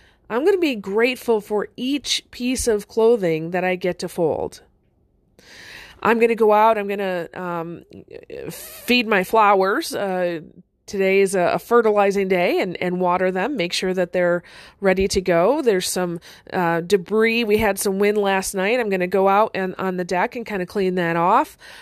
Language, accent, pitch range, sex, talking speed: English, American, 185-235 Hz, female, 190 wpm